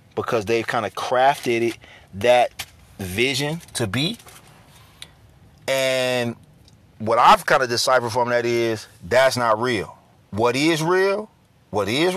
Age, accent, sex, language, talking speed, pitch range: 30-49, American, male, English, 135 wpm, 110-135 Hz